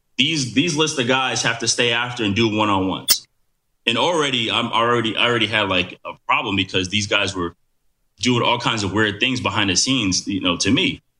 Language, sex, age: English, male, 20-39